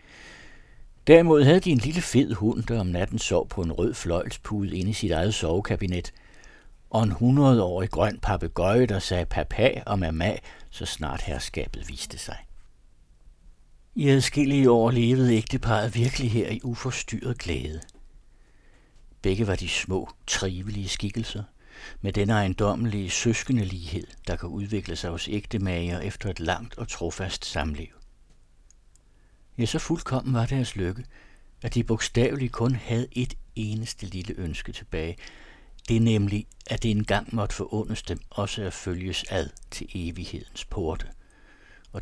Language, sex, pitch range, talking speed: Danish, male, 90-115 Hz, 145 wpm